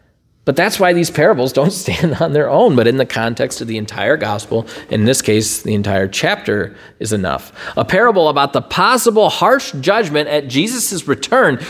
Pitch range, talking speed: 115-180 Hz, 185 wpm